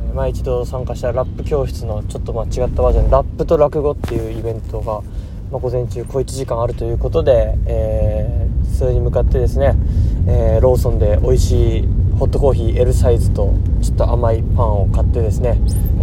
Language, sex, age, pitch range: Japanese, male, 20-39, 95-115 Hz